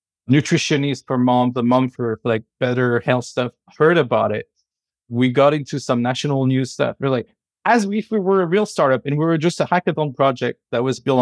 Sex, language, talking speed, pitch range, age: male, English, 220 wpm, 125-150 Hz, 20-39